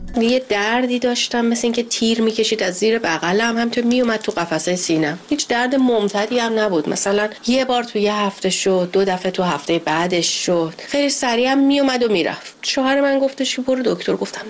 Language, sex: Persian, female